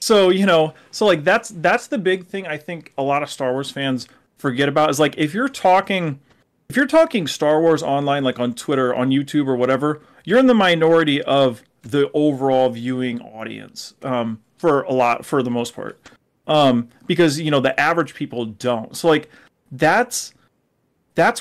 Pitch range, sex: 125-160 Hz, male